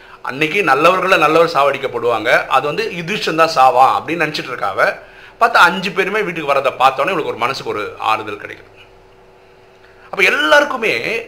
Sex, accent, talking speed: male, native, 140 wpm